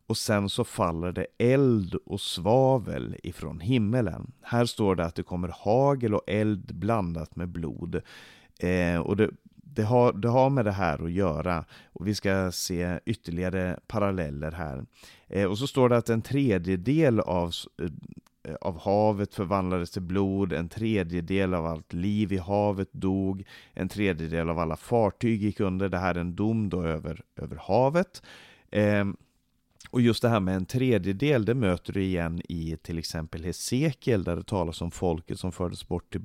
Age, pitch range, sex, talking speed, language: 30-49, 90-115 Hz, male, 170 wpm, Swedish